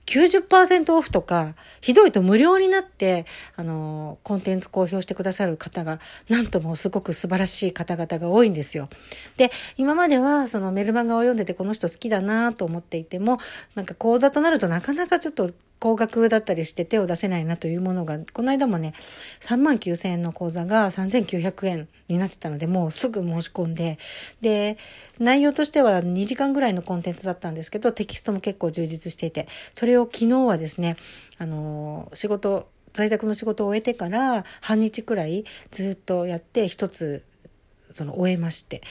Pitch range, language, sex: 170-230 Hz, Japanese, female